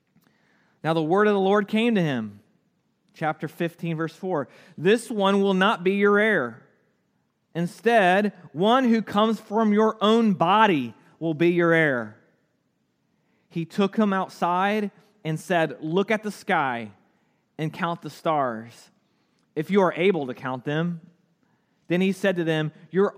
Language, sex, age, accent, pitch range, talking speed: English, male, 30-49, American, 145-195 Hz, 155 wpm